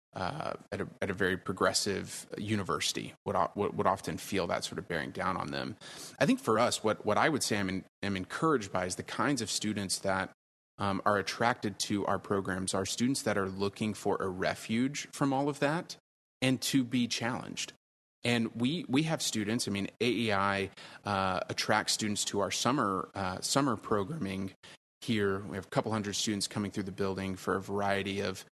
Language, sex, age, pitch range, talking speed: English, male, 30-49, 100-115 Hz, 195 wpm